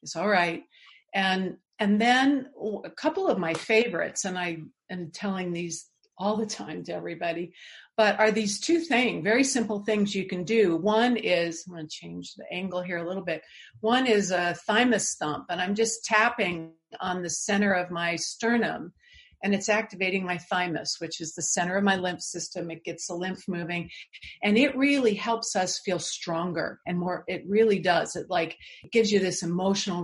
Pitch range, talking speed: 175-225 Hz, 190 wpm